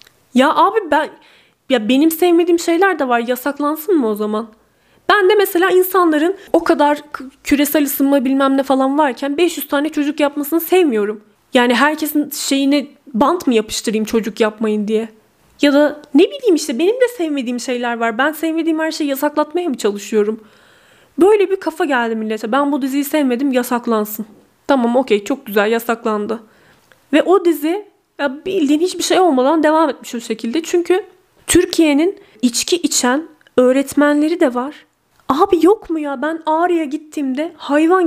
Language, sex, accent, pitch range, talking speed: Turkish, female, native, 235-325 Hz, 155 wpm